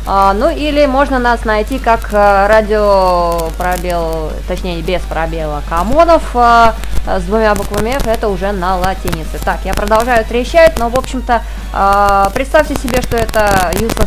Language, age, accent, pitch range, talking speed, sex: Russian, 20-39, native, 180-235 Hz, 140 wpm, female